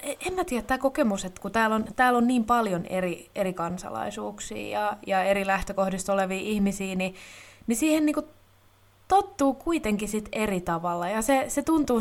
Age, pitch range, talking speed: 20-39, 150-210 Hz, 180 wpm